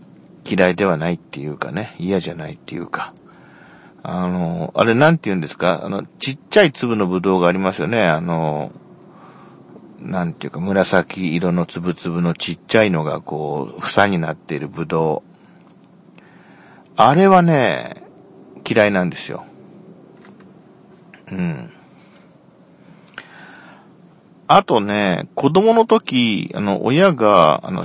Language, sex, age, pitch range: Japanese, male, 40-59, 90-140 Hz